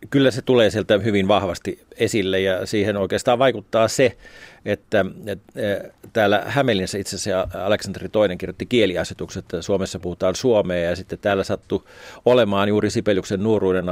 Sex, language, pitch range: male, Finnish, 90-105 Hz